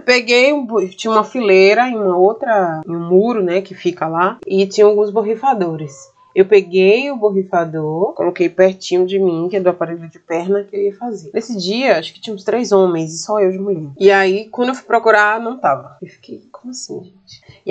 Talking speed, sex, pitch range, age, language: 215 wpm, female, 175-240 Hz, 20-39, Portuguese